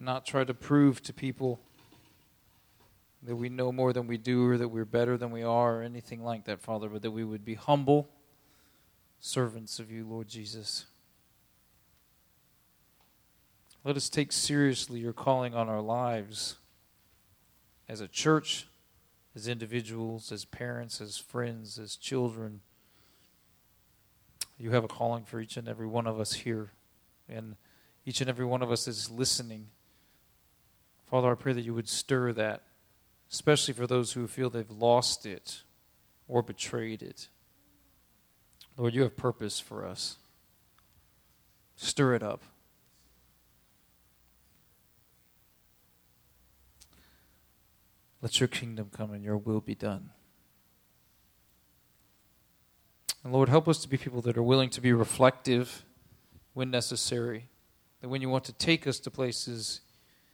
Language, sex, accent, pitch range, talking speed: English, male, American, 105-125 Hz, 135 wpm